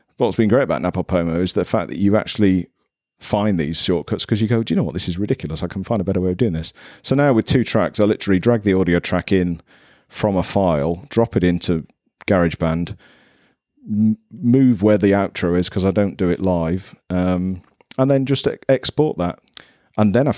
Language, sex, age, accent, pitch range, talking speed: English, male, 40-59, British, 90-110 Hz, 220 wpm